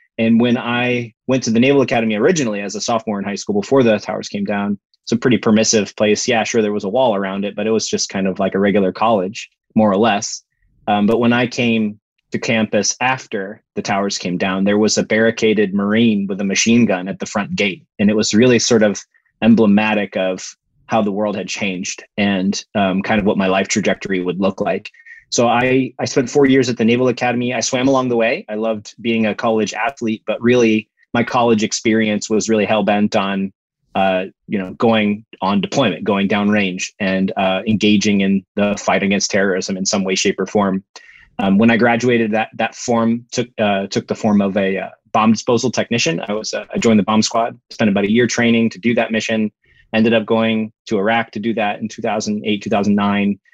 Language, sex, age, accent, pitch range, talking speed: English, male, 20-39, American, 100-115 Hz, 220 wpm